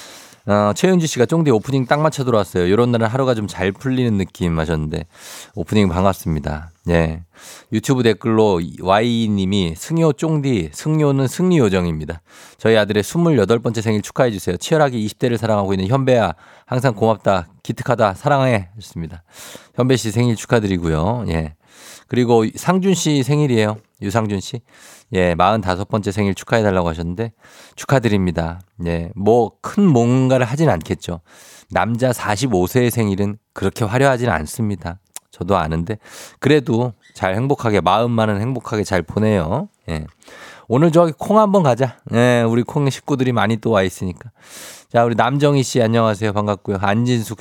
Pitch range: 95-130 Hz